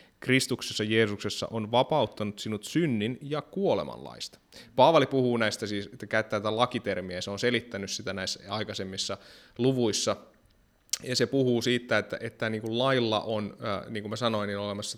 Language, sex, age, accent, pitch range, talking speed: Finnish, male, 20-39, native, 105-120 Hz, 155 wpm